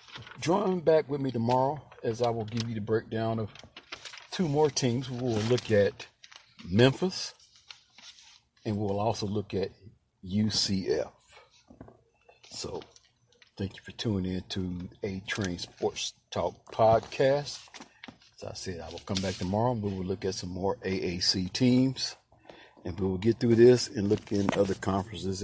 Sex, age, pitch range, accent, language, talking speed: male, 50-69, 95-125 Hz, American, English, 155 wpm